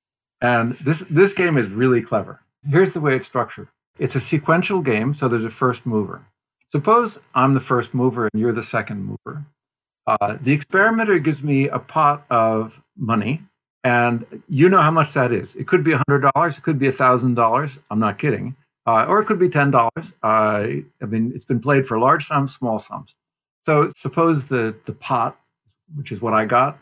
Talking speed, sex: 190 wpm, male